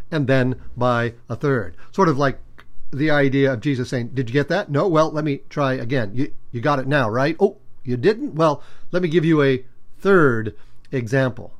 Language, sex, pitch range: English, male, 125-145 Hz